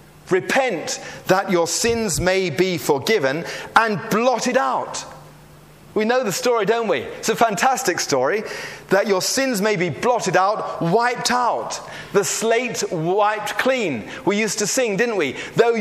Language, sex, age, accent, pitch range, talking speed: English, male, 40-59, British, 165-220 Hz, 150 wpm